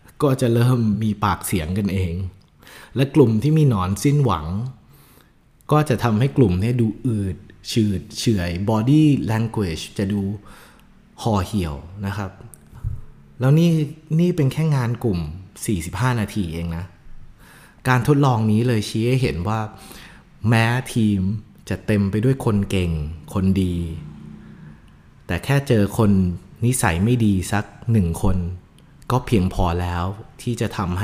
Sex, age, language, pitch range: male, 30-49, Thai, 95-120 Hz